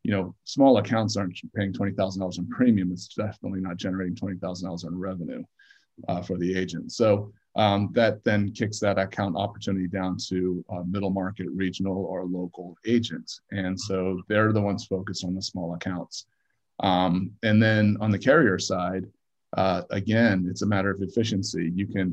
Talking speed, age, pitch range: 170 wpm, 30-49, 90-100 Hz